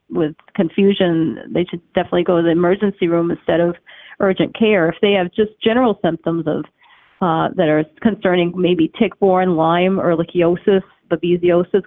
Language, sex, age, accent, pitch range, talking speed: English, female, 40-59, American, 170-185 Hz, 155 wpm